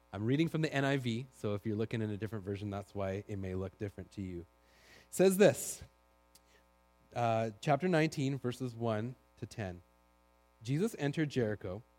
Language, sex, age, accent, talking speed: English, male, 30-49, American, 170 wpm